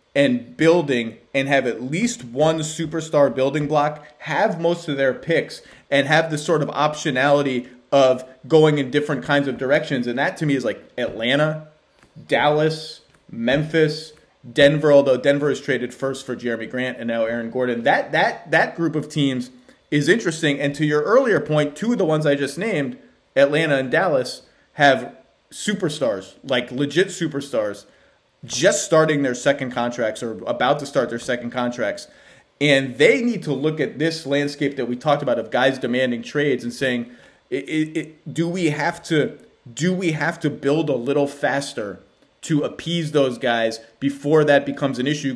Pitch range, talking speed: 130-155 Hz, 175 wpm